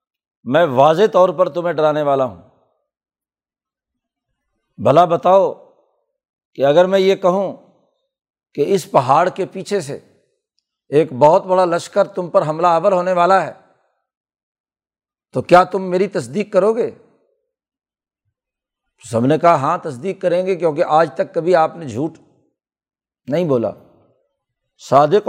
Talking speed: 135 wpm